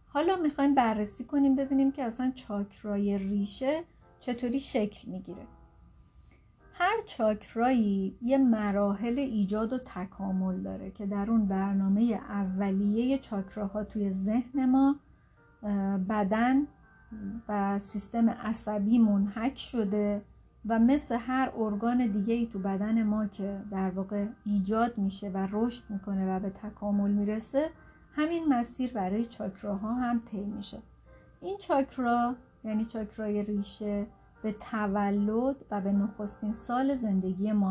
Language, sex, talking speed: Persian, female, 120 wpm